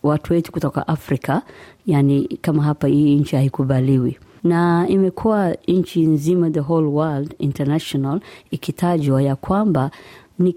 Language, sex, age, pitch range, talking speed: Swahili, female, 20-39, 145-185 Hz, 120 wpm